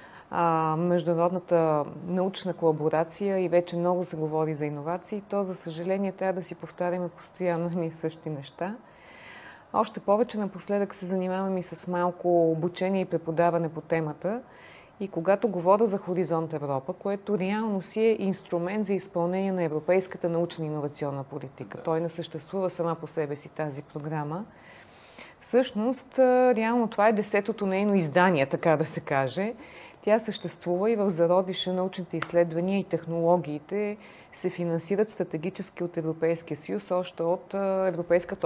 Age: 30-49